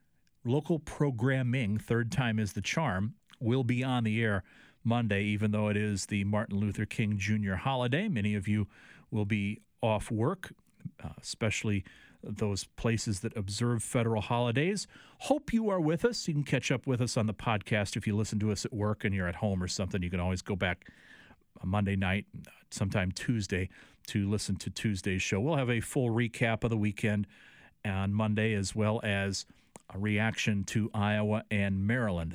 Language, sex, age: English, male, 40-59